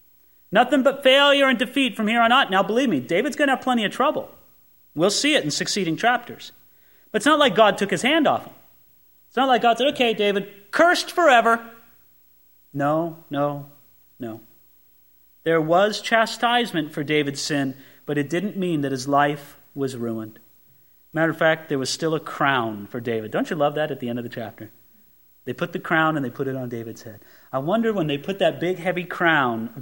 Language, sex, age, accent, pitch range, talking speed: English, male, 30-49, American, 110-180 Hz, 205 wpm